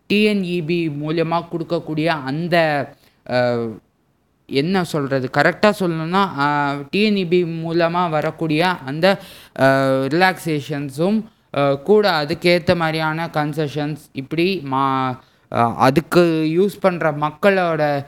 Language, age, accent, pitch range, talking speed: Tamil, 20-39, native, 140-180 Hz, 75 wpm